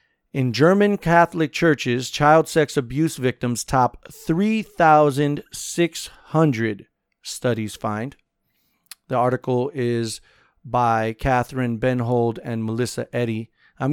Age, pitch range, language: 40-59, 115-150 Hz, English